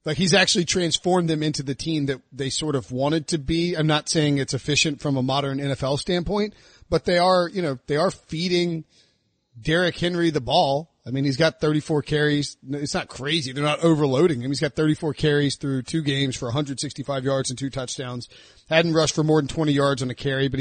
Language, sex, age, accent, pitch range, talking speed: English, male, 30-49, American, 140-170 Hz, 215 wpm